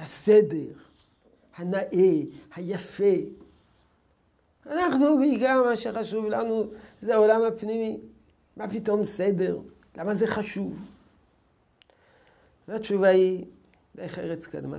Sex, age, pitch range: male, 50-69, 125-195 Hz